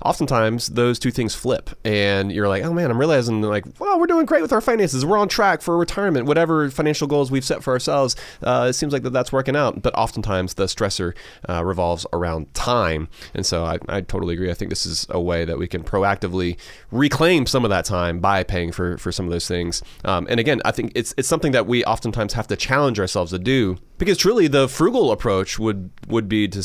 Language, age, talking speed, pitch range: English, 30-49, 230 wpm, 95-135 Hz